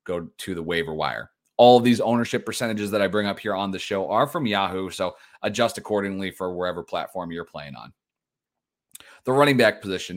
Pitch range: 95-120 Hz